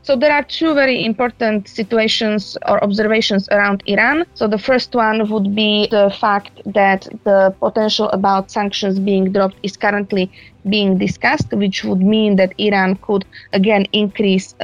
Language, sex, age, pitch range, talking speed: English, female, 20-39, 190-220 Hz, 155 wpm